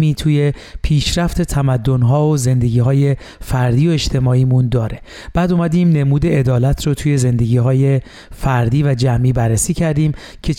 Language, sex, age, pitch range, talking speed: Persian, male, 40-59, 125-155 Hz, 130 wpm